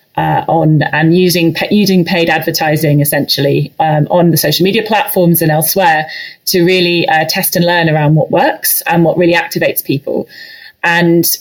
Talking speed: 165 wpm